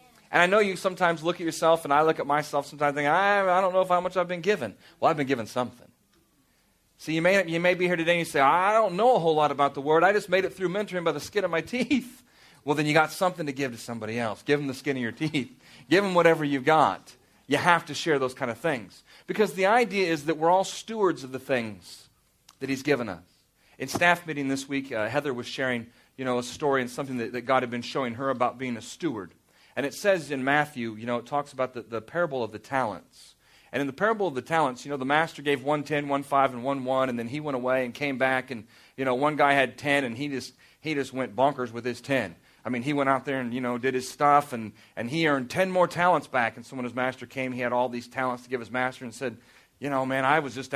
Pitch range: 130-165 Hz